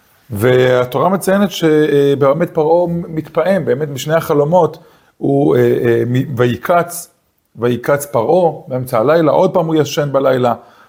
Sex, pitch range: male, 125-160 Hz